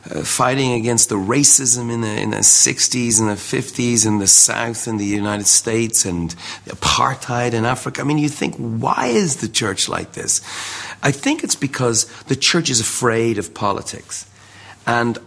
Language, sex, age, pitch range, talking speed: English, male, 40-59, 100-120 Hz, 180 wpm